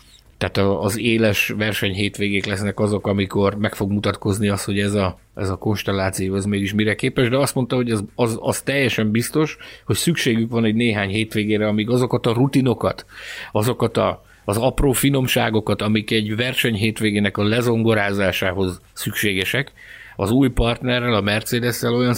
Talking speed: 155 wpm